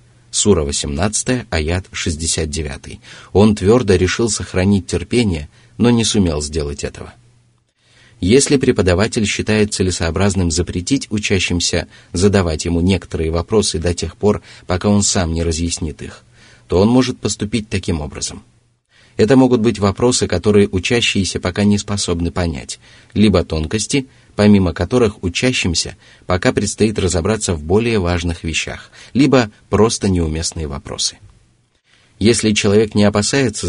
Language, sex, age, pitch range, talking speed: Russian, male, 30-49, 85-115 Hz, 125 wpm